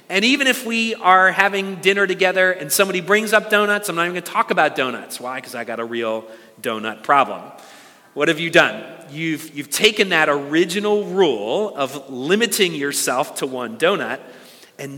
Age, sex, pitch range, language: 40-59, male, 145-200 Hz, English